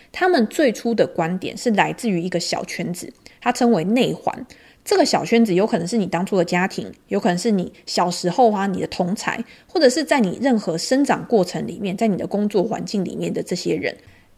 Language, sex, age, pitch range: Chinese, female, 20-39, 185-245 Hz